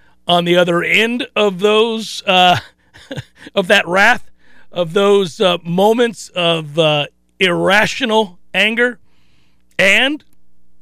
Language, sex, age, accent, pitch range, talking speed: English, male, 40-59, American, 155-210 Hz, 105 wpm